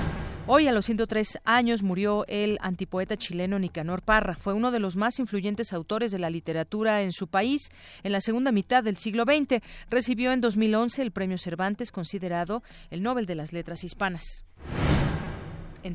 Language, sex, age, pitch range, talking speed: Spanish, female, 40-59, 180-230 Hz, 170 wpm